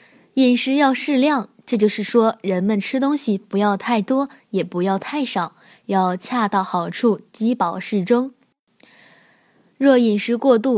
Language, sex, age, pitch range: Chinese, female, 10-29, 195-250 Hz